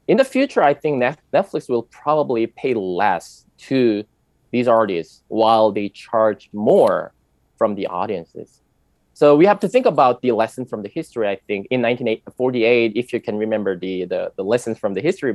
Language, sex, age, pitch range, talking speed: English, male, 20-39, 110-145 Hz, 175 wpm